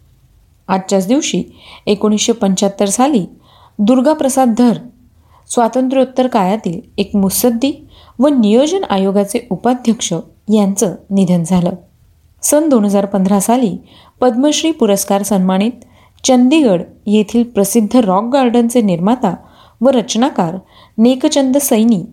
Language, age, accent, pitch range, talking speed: Marathi, 30-49, native, 195-250 Hz, 90 wpm